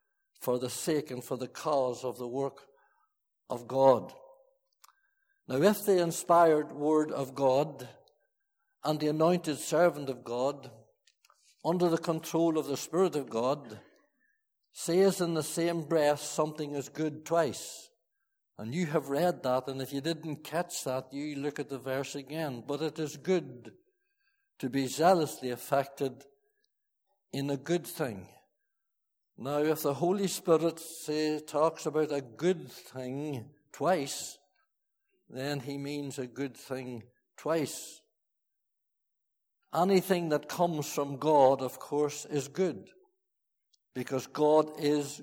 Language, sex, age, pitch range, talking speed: English, male, 60-79, 140-180 Hz, 135 wpm